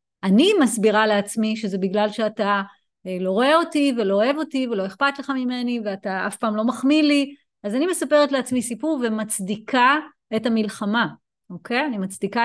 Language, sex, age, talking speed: Hebrew, female, 30-49, 160 wpm